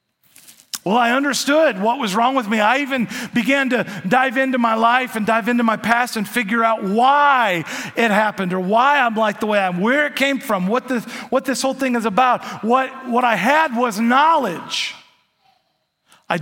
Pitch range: 210-265 Hz